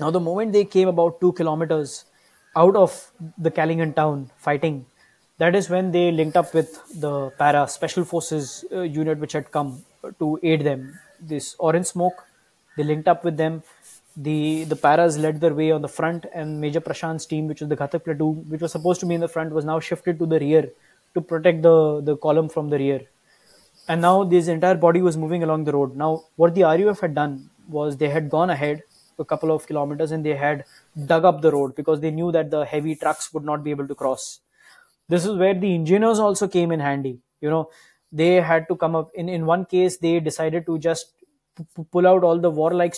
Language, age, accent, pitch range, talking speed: English, 20-39, Indian, 150-170 Hz, 220 wpm